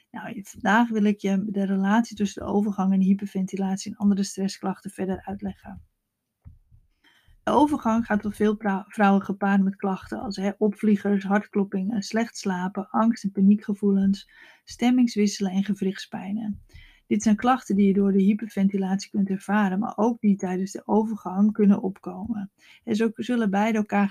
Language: Dutch